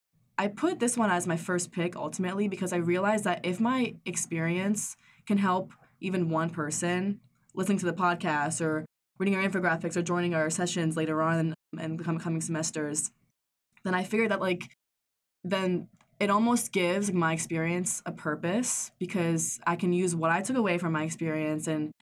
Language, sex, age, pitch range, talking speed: English, female, 20-39, 160-185 Hz, 175 wpm